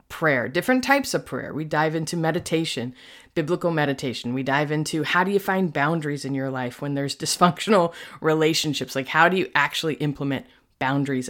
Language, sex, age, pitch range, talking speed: English, female, 30-49, 140-175 Hz, 175 wpm